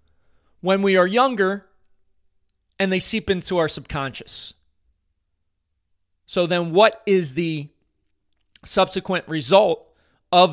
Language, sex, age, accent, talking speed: English, male, 30-49, American, 105 wpm